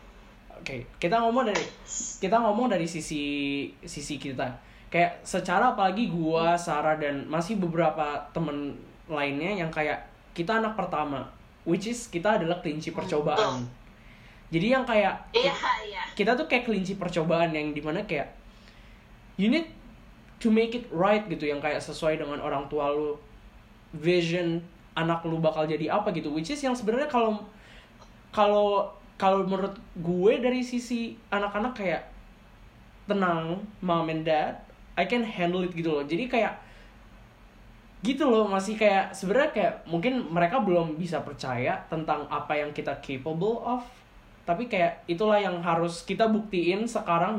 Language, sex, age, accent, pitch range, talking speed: English, male, 10-29, Indonesian, 155-205 Hz, 145 wpm